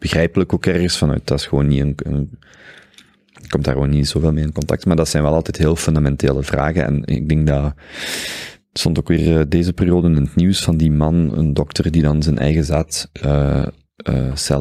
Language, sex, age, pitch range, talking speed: Dutch, male, 30-49, 75-80 Hz, 205 wpm